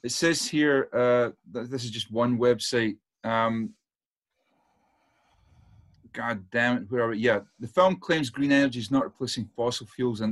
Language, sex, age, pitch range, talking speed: English, male, 30-49, 115-140 Hz, 170 wpm